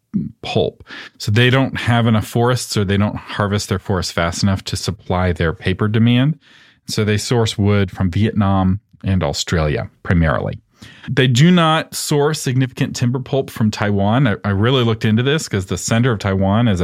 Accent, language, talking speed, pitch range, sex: American, English, 180 wpm, 100-125 Hz, male